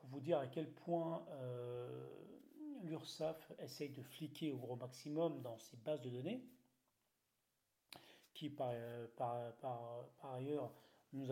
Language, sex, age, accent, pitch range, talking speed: French, male, 40-59, French, 125-155 Hz, 135 wpm